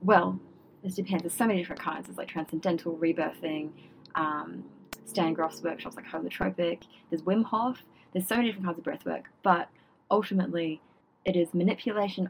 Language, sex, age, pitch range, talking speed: English, female, 20-39, 160-185 Hz, 165 wpm